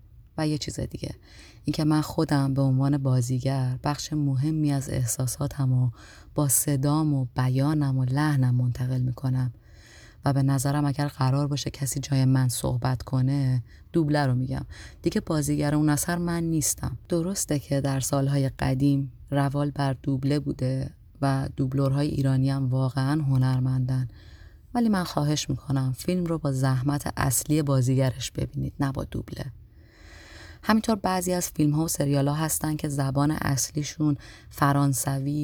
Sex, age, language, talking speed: female, 30-49, Persian, 145 wpm